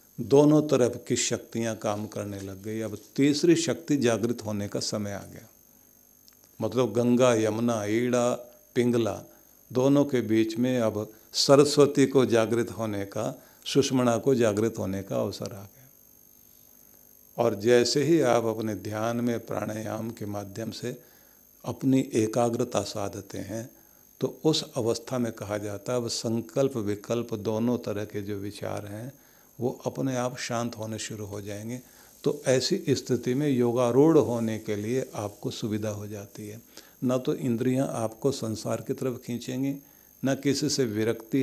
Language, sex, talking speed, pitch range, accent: Hindi, male, 150 wpm, 110-130 Hz, native